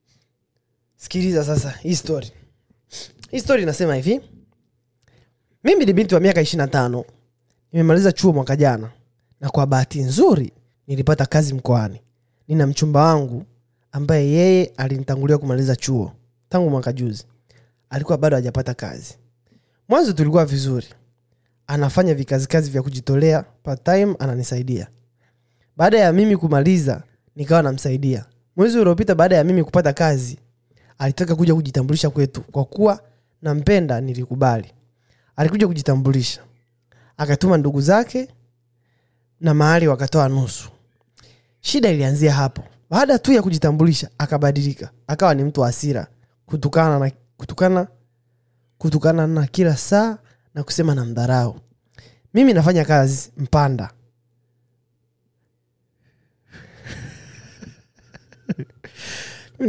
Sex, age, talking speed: male, 20-39, 110 wpm